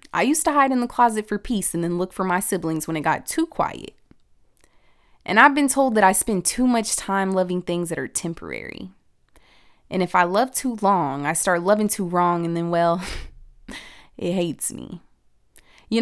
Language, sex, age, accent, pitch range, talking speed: English, female, 20-39, American, 165-200 Hz, 200 wpm